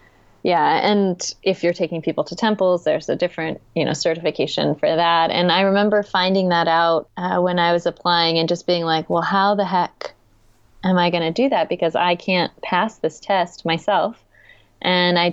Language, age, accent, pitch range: English, 20-39, American, 165-185 Hz